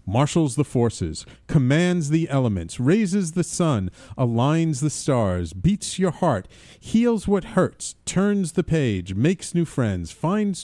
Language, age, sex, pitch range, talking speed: English, 40-59, male, 100-155 Hz, 140 wpm